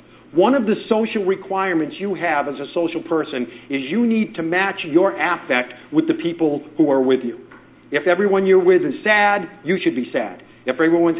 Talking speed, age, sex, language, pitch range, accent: 200 wpm, 50-69, male, English, 155-190 Hz, American